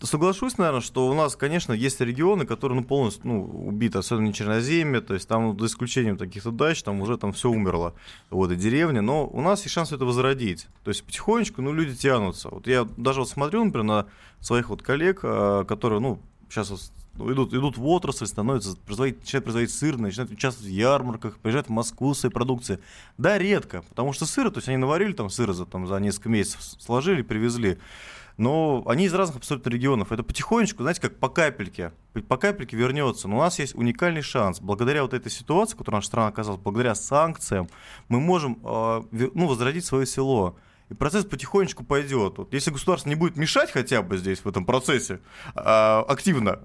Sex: male